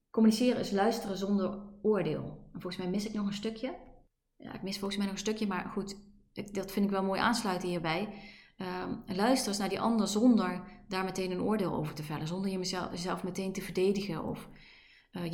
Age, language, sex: 30-49, Dutch, female